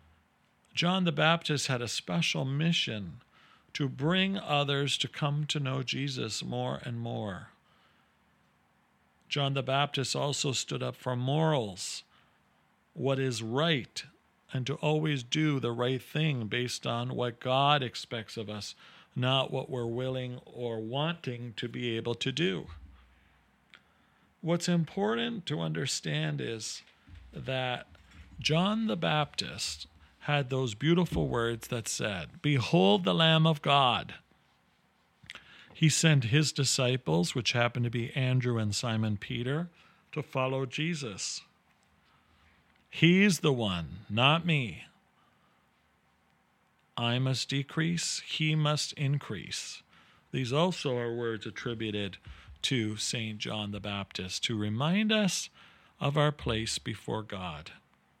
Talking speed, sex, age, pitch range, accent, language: 120 wpm, male, 50-69, 110-150 Hz, American, English